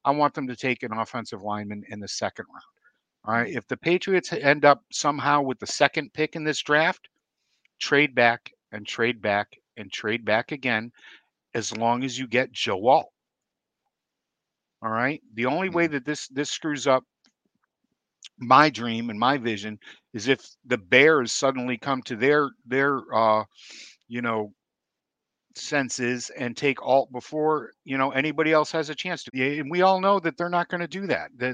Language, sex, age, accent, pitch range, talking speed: English, male, 50-69, American, 125-155 Hz, 180 wpm